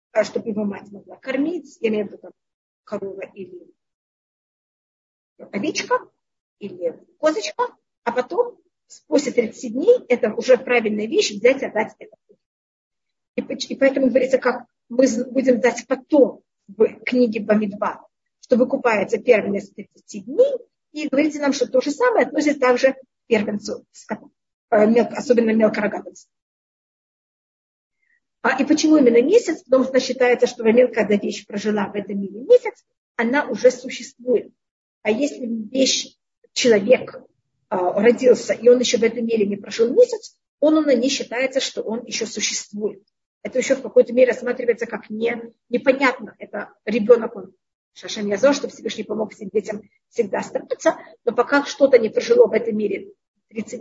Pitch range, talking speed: 220-290 Hz, 145 wpm